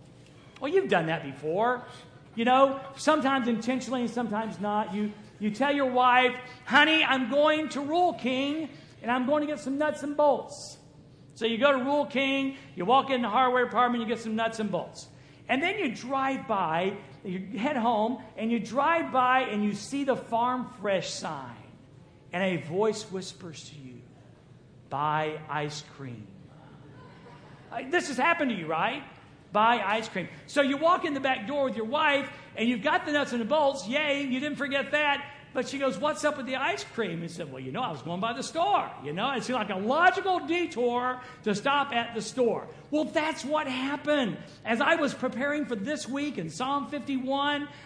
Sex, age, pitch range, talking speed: male, 50-69, 205-285 Hz, 195 wpm